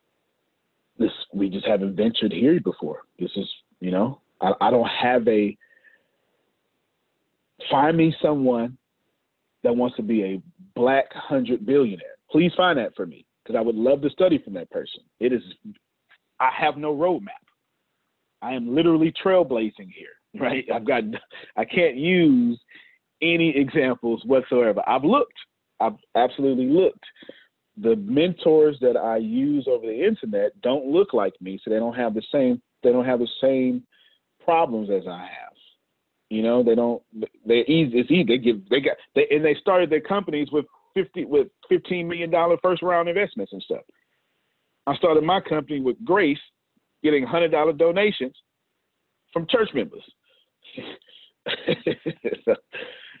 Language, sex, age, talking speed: English, male, 40-59, 150 wpm